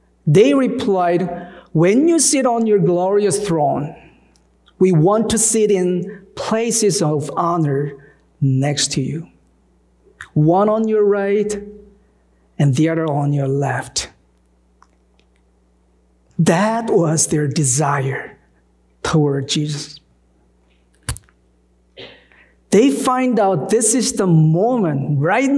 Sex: male